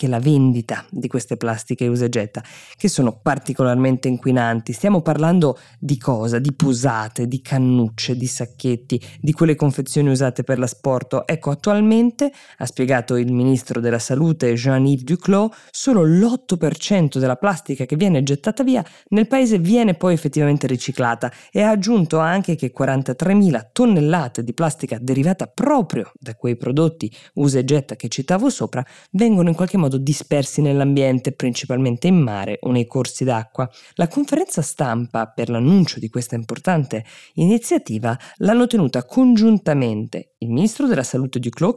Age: 20-39